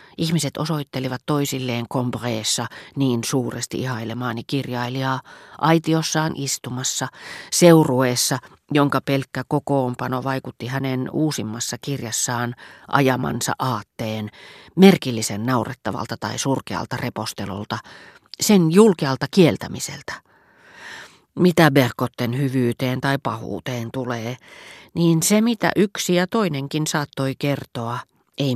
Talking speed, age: 90 wpm, 40-59